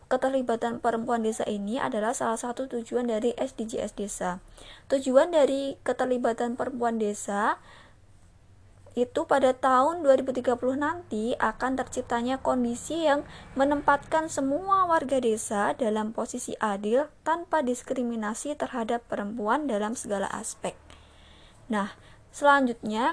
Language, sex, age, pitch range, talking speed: Indonesian, female, 20-39, 220-270 Hz, 105 wpm